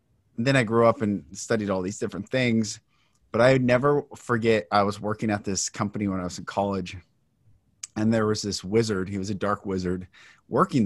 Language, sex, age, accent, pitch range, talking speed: English, male, 30-49, American, 105-125 Hz, 205 wpm